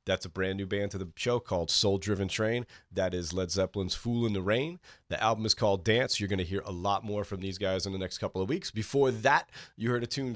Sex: male